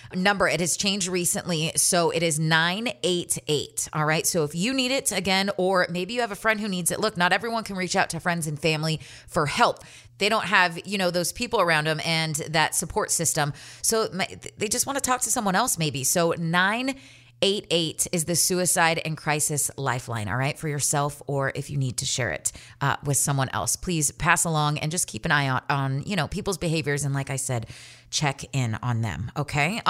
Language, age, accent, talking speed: English, 30-49, American, 215 wpm